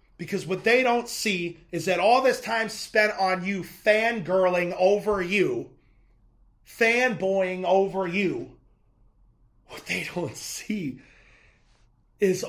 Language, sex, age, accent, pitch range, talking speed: English, male, 30-49, American, 170-200 Hz, 115 wpm